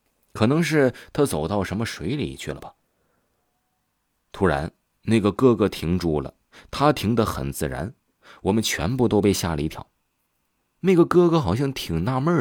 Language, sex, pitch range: Chinese, male, 85-130 Hz